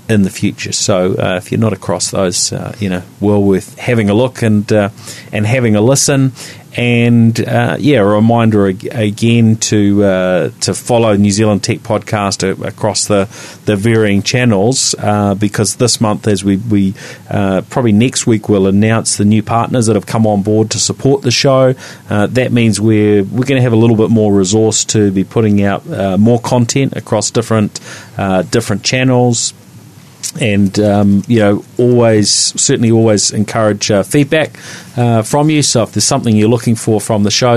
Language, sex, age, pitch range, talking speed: English, male, 40-59, 100-120 Hz, 190 wpm